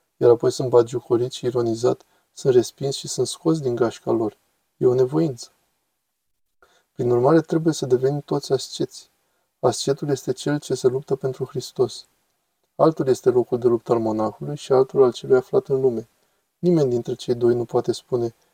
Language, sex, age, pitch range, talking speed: Romanian, male, 20-39, 125-165 Hz, 170 wpm